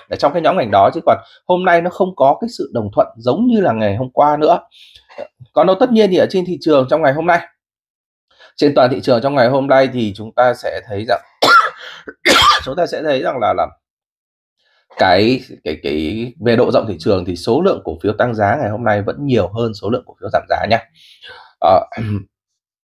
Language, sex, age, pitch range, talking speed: Vietnamese, male, 20-39, 120-185 Hz, 225 wpm